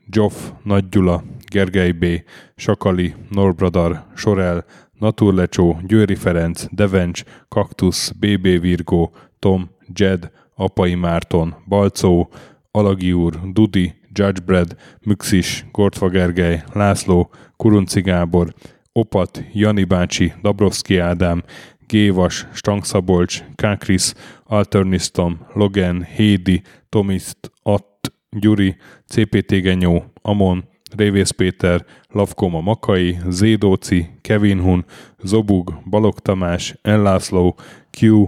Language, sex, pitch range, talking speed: Hungarian, male, 90-105 Hz, 90 wpm